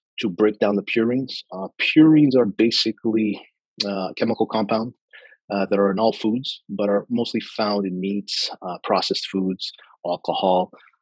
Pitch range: 100-125 Hz